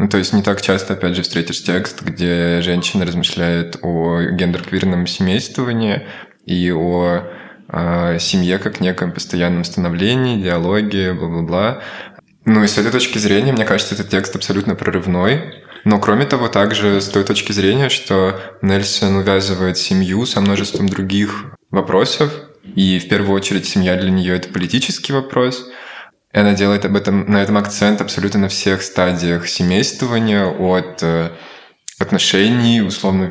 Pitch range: 90-105 Hz